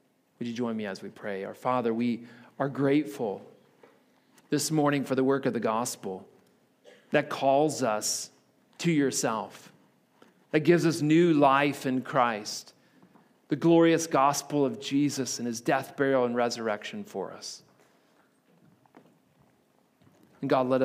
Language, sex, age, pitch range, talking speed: English, male, 40-59, 120-140 Hz, 140 wpm